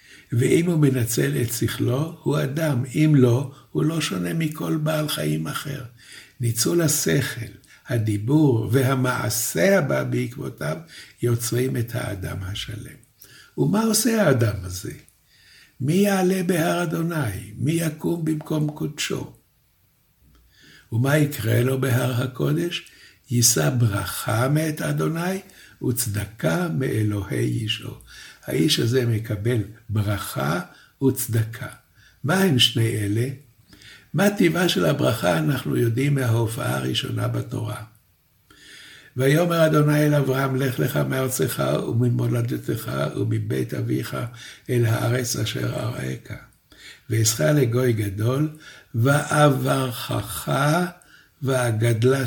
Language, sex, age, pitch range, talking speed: Hebrew, male, 60-79, 115-150 Hz, 100 wpm